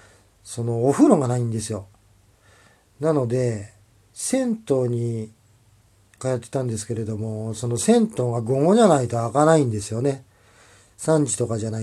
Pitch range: 105-135 Hz